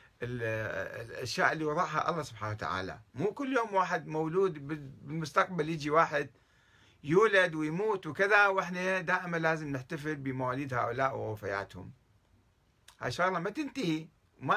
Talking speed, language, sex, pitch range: 120 wpm, Arabic, male, 125-180 Hz